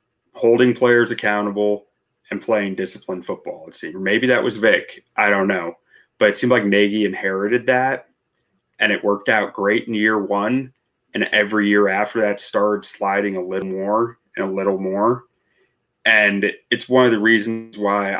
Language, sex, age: English, male, 20-39